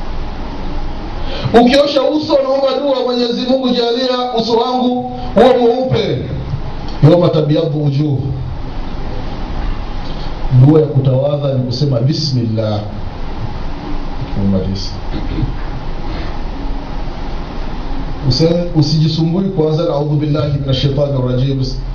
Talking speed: 85 wpm